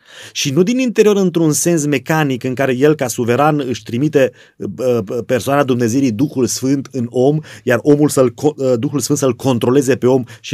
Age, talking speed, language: 30-49, 170 wpm, Romanian